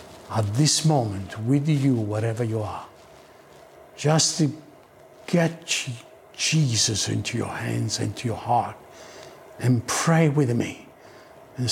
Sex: male